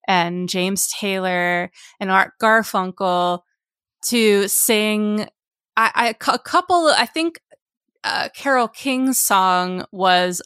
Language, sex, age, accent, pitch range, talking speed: English, female, 20-39, American, 190-235 Hz, 110 wpm